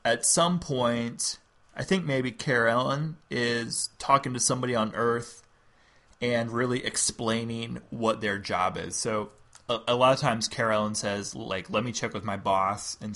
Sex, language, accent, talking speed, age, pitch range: male, English, American, 165 wpm, 20-39, 105-125 Hz